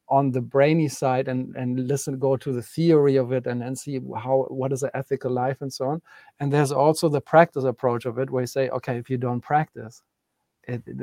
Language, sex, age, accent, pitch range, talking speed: English, male, 50-69, German, 125-145 Hz, 230 wpm